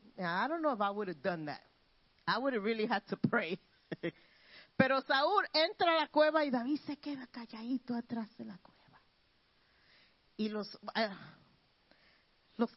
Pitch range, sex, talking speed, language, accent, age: 210-285 Hz, female, 165 wpm, Spanish, American, 40-59